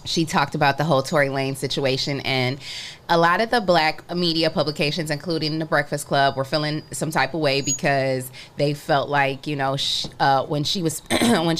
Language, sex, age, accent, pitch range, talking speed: English, female, 20-39, American, 140-165 Hz, 190 wpm